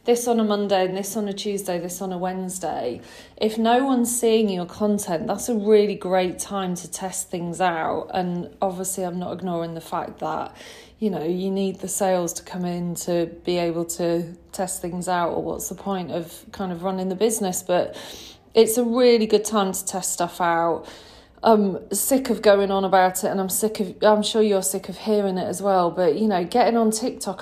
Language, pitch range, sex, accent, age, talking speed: English, 180-210 Hz, female, British, 30-49, 215 wpm